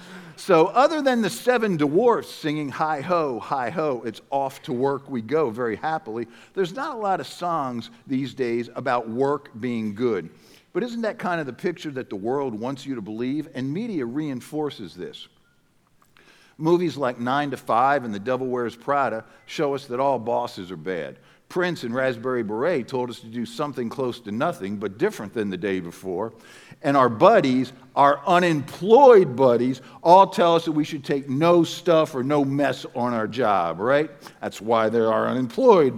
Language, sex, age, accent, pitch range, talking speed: English, male, 50-69, American, 115-155 Hz, 180 wpm